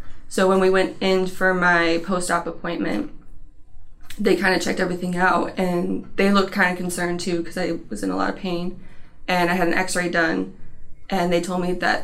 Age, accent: 20-39, American